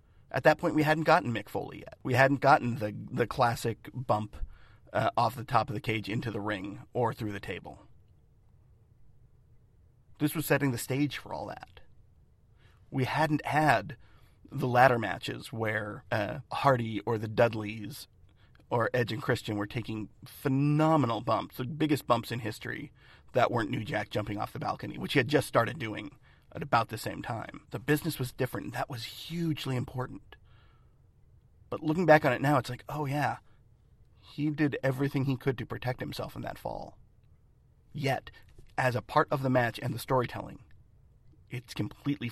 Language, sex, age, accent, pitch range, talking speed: English, male, 40-59, American, 110-140 Hz, 175 wpm